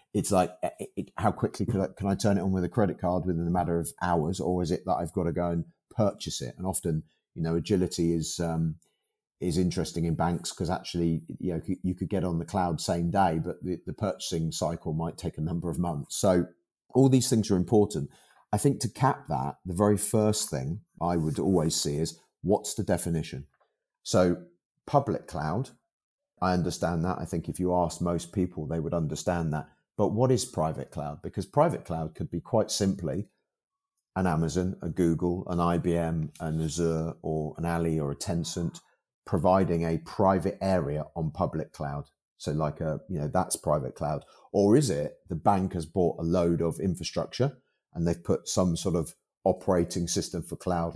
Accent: British